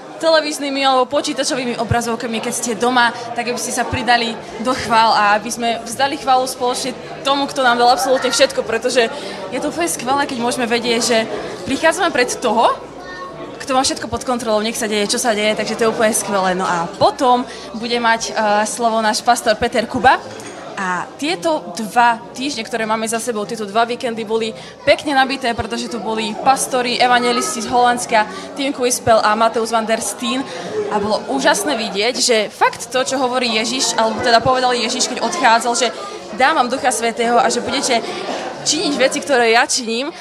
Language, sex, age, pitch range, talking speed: Czech, female, 20-39, 230-260 Hz, 180 wpm